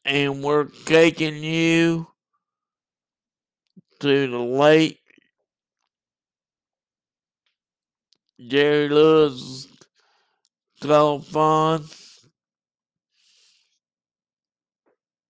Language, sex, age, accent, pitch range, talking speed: English, male, 60-79, American, 125-155 Hz, 40 wpm